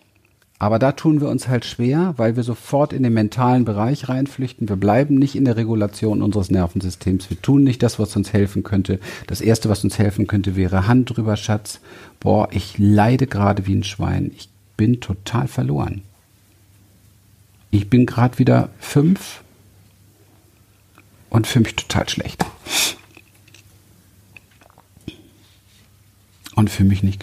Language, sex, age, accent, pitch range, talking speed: German, male, 50-69, German, 100-120 Hz, 145 wpm